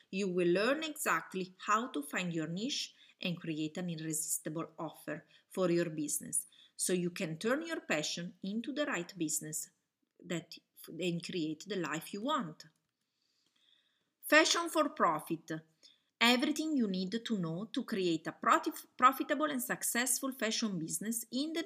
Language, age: English, 30-49